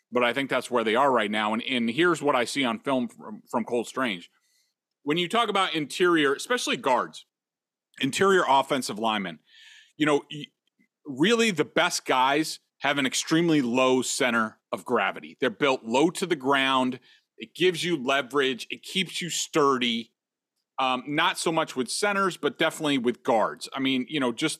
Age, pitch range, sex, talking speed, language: 40-59, 130-165 Hz, male, 180 wpm, English